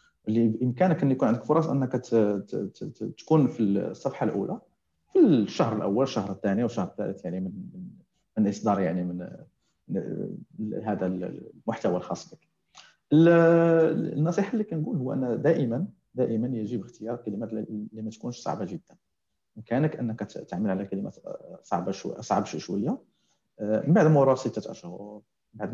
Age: 40-59